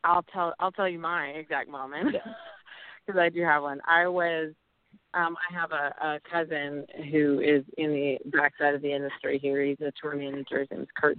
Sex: female